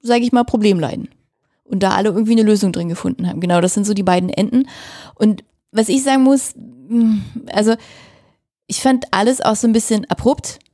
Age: 30-49